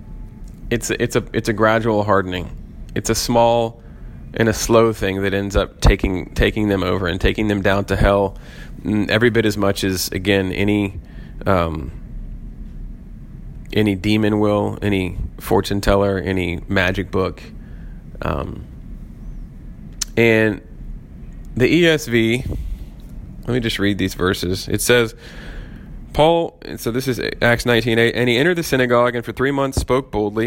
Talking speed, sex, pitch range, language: 150 wpm, male, 95-120 Hz, English